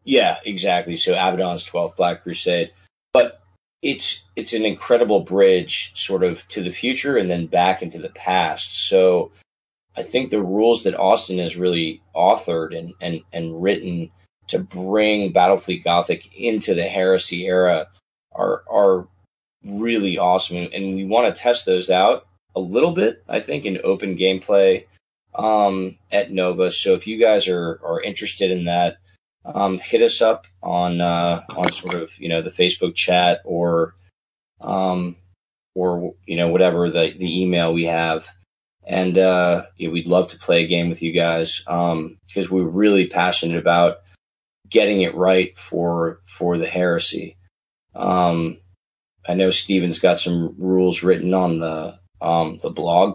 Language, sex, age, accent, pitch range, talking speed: English, male, 20-39, American, 85-95 Hz, 160 wpm